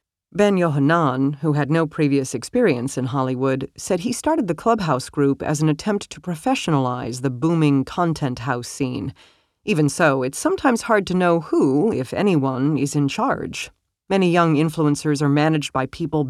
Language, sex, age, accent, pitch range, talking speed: English, female, 40-59, American, 135-170 Hz, 165 wpm